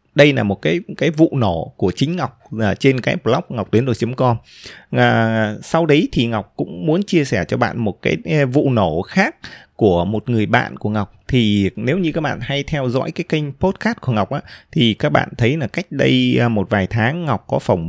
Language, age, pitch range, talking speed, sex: Vietnamese, 20-39, 105-145 Hz, 220 wpm, male